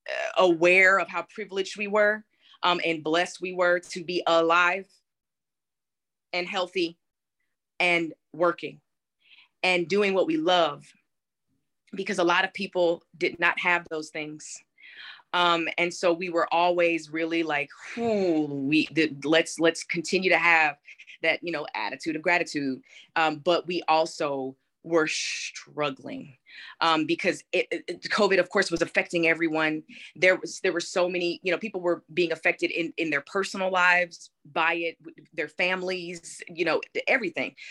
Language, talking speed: English, 145 wpm